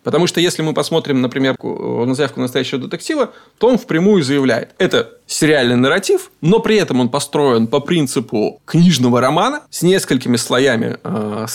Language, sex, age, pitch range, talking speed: Russian, male, 20-39, 125-180 Hz, 155 wpm